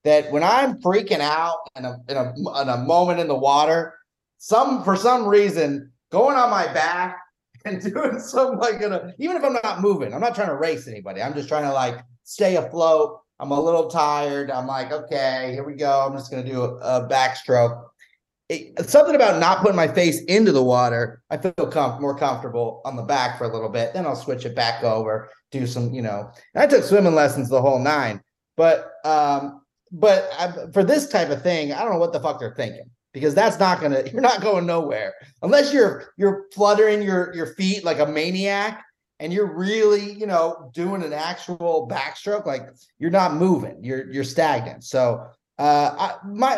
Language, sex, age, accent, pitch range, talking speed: English, male, 30-49, American, 140-210 Hz, 205 wpm